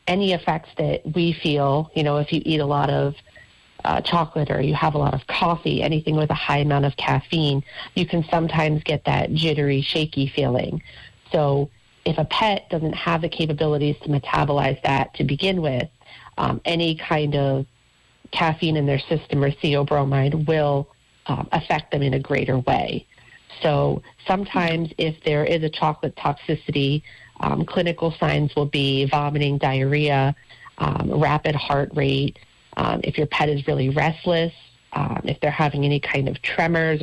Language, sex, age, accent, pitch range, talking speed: English, female, 40-59, American, 140-160 Hz, 170 wpm